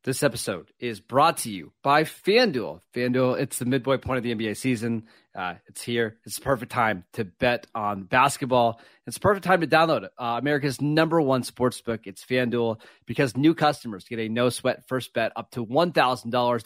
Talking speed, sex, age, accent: 185 wpm, male, 30-49, American